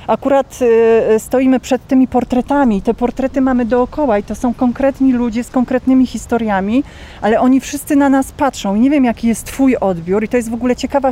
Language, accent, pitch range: English, Polish, 215-250 Hz